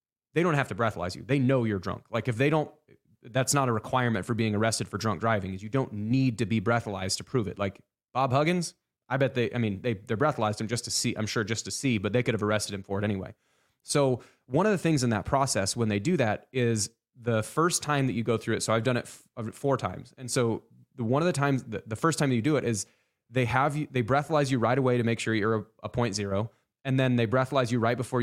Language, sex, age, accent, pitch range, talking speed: English, male, 20-39, American, 110-135 Hz, 275 wpm